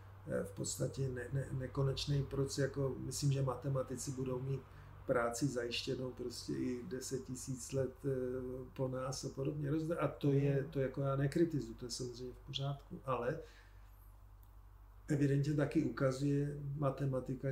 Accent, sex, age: native, male, 40-59